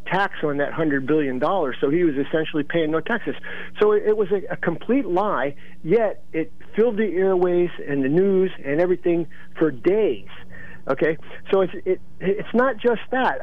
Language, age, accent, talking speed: English, 50-69, American, 175 wpm